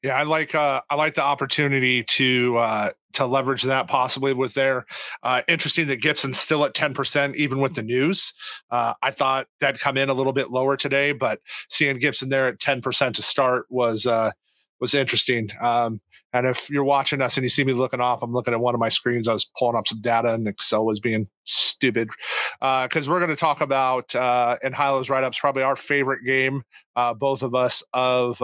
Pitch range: 125-145 Hz